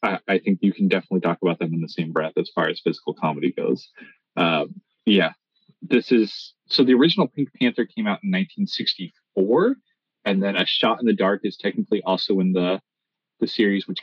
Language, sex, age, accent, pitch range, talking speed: English, male, 30-49, American, 95-135 Hz, 195 wpm